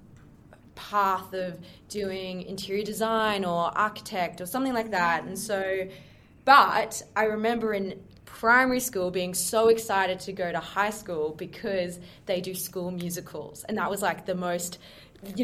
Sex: female